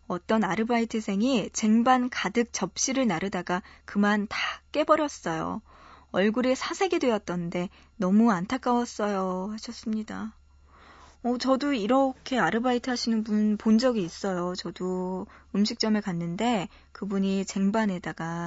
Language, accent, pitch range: Korean, native, 195-255 Hz